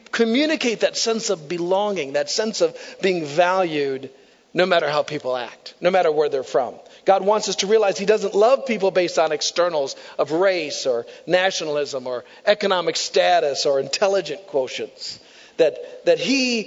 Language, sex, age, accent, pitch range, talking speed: English, male, 50-69, American, 180-260 Hz, 160 wpm